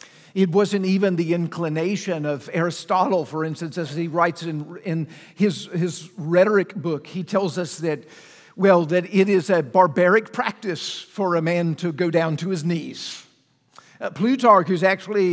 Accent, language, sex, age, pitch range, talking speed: American, English, male, 50-69, 175-220 Hz, 165 wpm